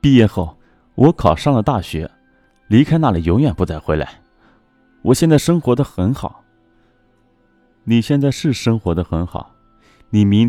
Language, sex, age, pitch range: Chinese, male, 30-49, 90-140 Hz